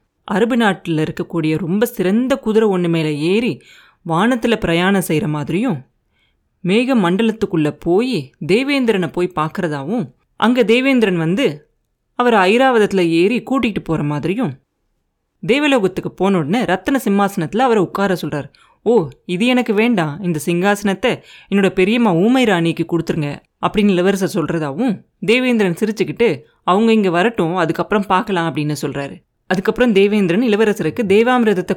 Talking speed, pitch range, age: 115 wpm, 170-225 Hz, 30-49